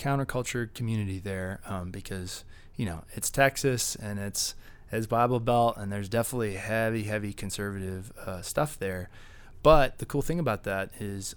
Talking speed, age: 160 wpm, 20-39